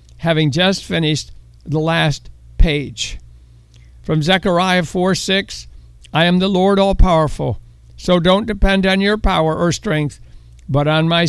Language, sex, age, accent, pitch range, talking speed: English, male, 60-79, American, 155-185 Hz, 140 wpm